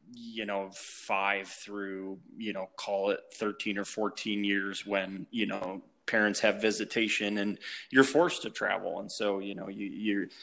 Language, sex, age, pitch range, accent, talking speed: English, male, 20-39, 100-115 Hz, American, 160 wpm